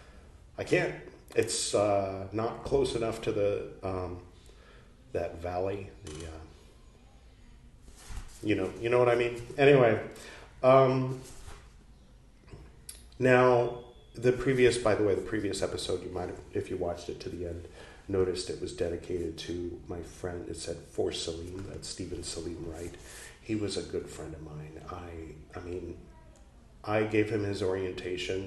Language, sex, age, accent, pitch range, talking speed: English, male, 40-59, American, 80-105 Hz, 150 wpm